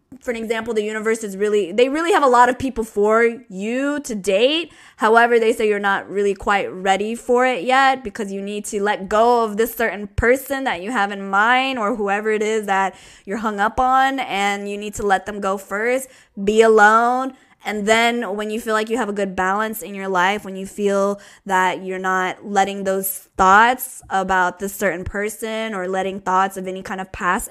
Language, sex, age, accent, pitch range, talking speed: English, female, 10-29, American, 200-250 Hz, 215 wpm